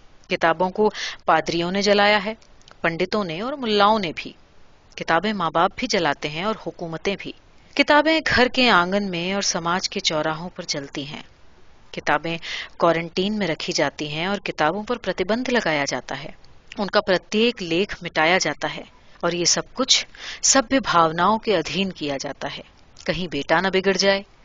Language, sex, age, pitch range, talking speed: Urdu, female, 30-49, 160-210 Hz, 165 wpm